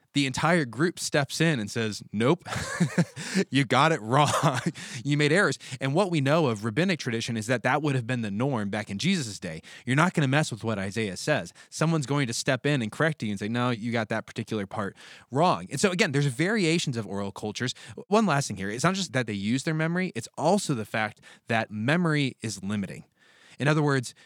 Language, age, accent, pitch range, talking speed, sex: English, 20-39, American, 110-150 Hz, 225 wpm, male